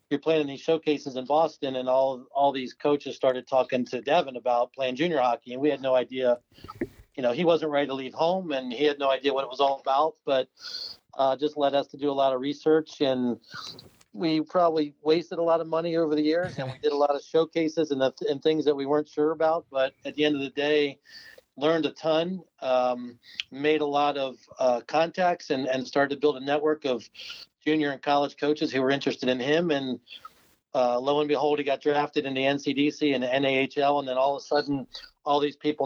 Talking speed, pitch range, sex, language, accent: 230 wpm, 130-155 Hz, male, English, American